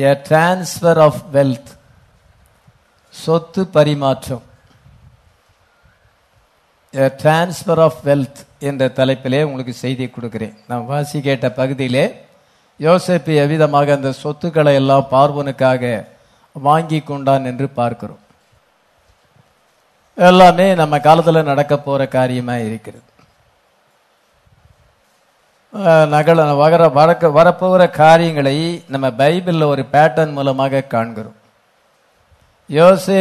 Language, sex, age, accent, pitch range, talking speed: English, male, 50-69, Indian, 130-160 Hz, 80 wpm